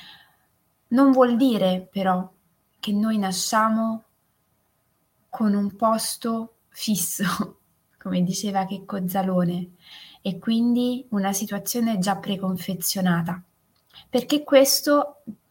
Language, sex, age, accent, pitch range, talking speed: Italian, female, 20-39, native, 185-230 Hz, 90 wpm